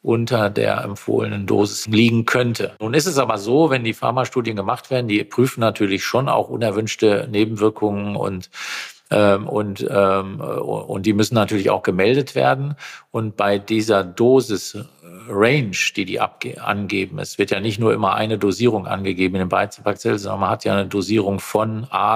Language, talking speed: German, 170 wpm